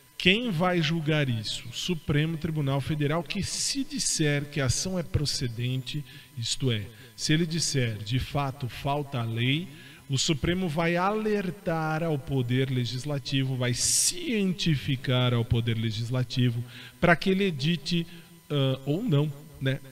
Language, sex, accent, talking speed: Portuguese, male, Brazilian, 135 wpm